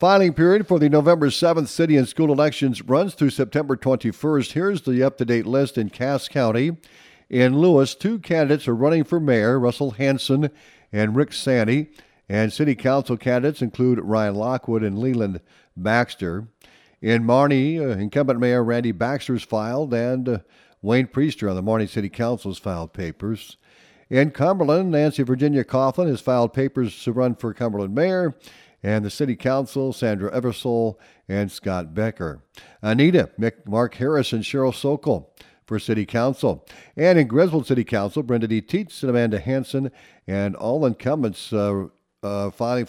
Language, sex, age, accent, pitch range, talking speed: English, male, 50-69, American, 105-140 Hz, 160 wpm